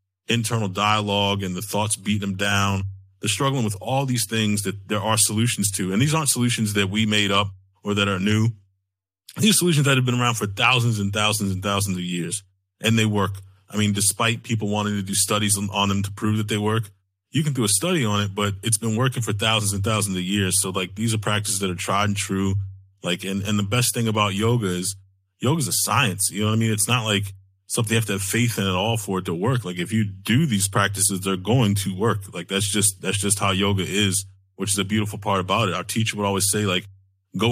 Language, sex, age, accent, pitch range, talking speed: English, male, 30-49, American, 95-115 Hz, 250 wpm